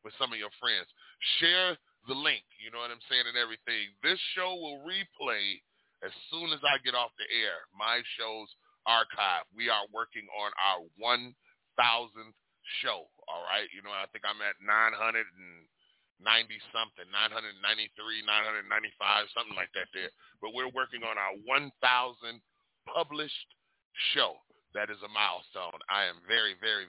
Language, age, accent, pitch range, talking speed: English, 30-49, American, 110-170 Hz, 150 wpm